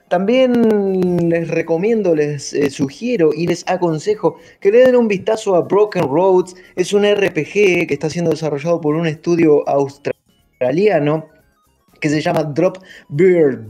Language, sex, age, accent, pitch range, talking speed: Spanish, male, 30-49, Argentinian, 145-185 Hz, 145 wpm